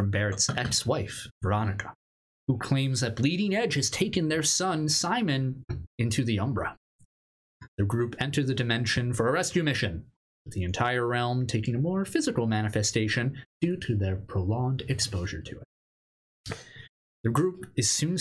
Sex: male